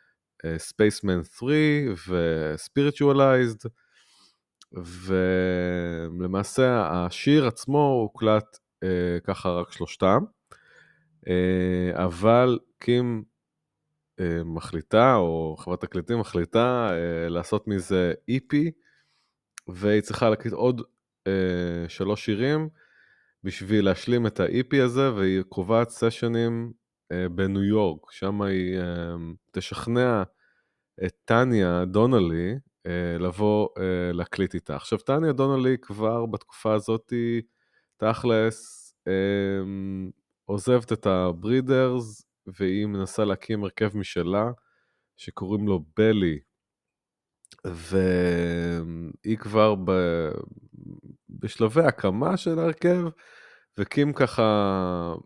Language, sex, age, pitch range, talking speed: Hebrew, male, 30-49, 90-120 Hz, 85 wpm